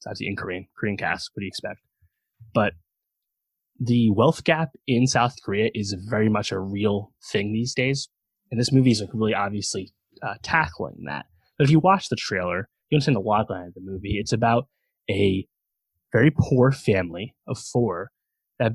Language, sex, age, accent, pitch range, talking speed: English, male, 20-39, American, 95-120 Hz, 180 wpm